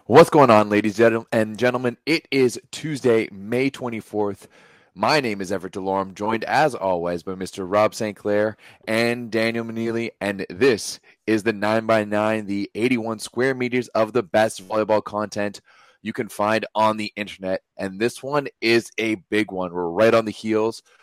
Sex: male